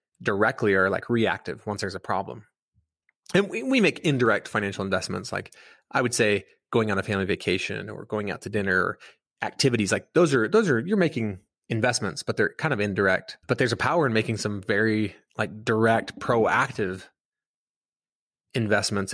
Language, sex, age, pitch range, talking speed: English, male, 20-39, 105-115 Hz, 170 wpm